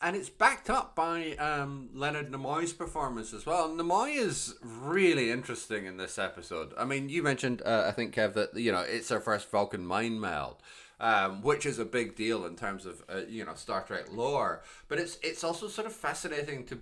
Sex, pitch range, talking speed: male, 115-160 Hz, 205 wpm